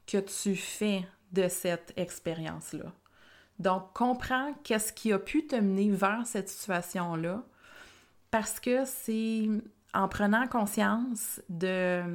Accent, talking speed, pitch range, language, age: Canadian, 120 wpm, 175-210 Hz, French, 30-49